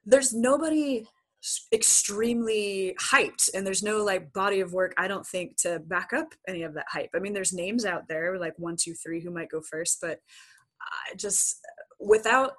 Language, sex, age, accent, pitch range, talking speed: English, female, 20-39, American, 170-215 Hz, 185 wpm